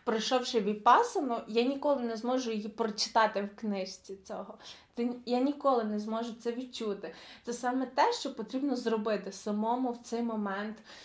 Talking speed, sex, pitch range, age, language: 145 wpm, female, 210-245 Hz, 20-39, Ukrainian